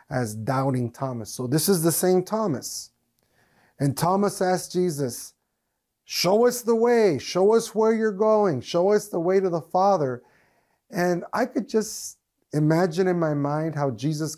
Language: English